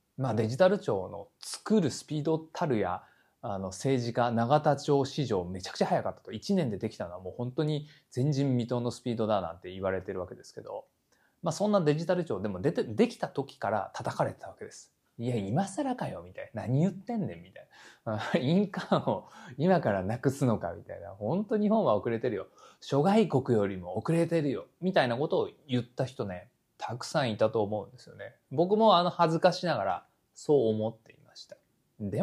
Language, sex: Japanese, male